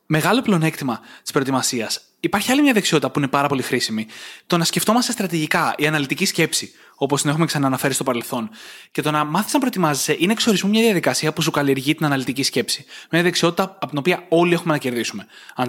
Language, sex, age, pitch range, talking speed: Greek, male, 20-39, 135-175 Hz, 200 wpm